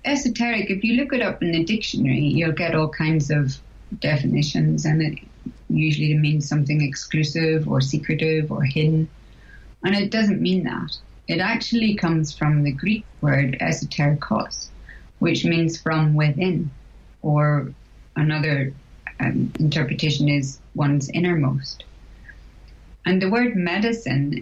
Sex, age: female, 30-49